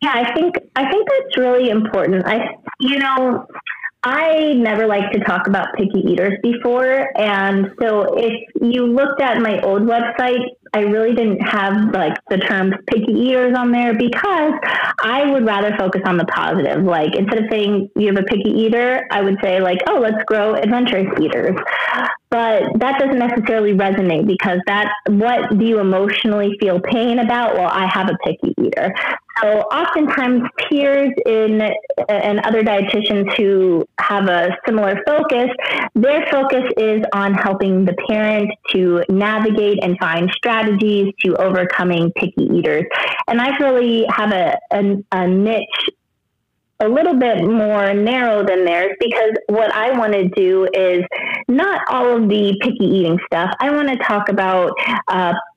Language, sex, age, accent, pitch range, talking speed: English, female, 30-49, American, 195-245 Hz, 160 wpm